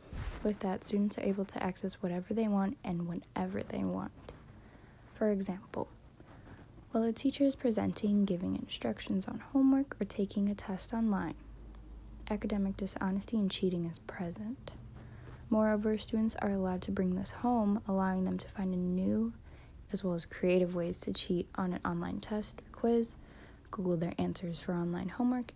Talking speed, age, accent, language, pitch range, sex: 160 wpm, 10-29, American, English, 180-215 Hz, female